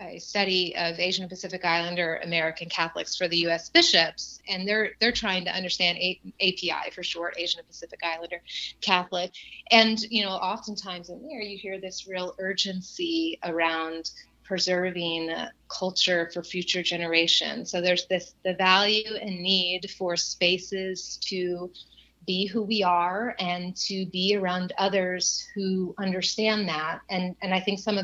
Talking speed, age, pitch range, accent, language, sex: 150 wpm, 30-49, 170-195 Hz, American, English, female